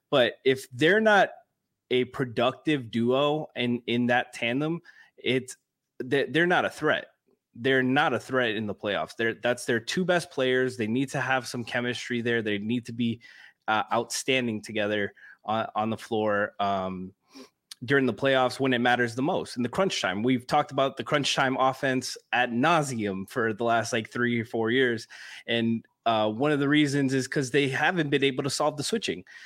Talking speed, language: 190 wpm, English